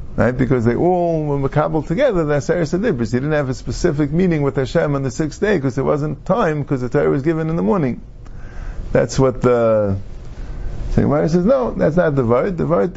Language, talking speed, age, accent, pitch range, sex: English, 215 wpm, 50-69, American, 115-170 Hz, male